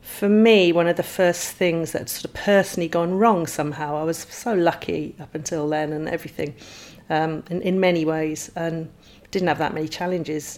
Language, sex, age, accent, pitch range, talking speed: English, female, 40-59, British, 160-190 Hz, 205 wpm